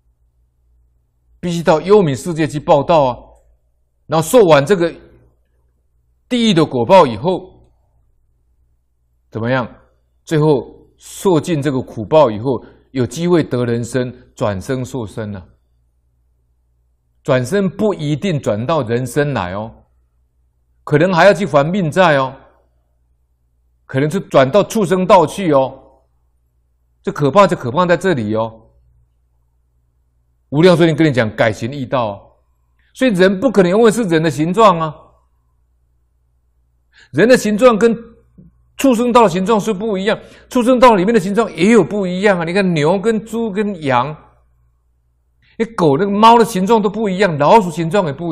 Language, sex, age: Chinese, male, 60-79